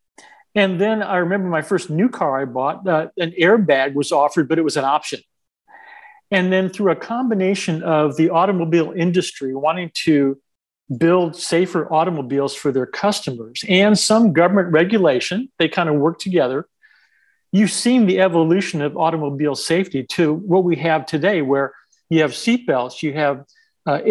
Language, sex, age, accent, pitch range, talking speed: English, male, 50-69, American, 145-190 Hz, 160 wpm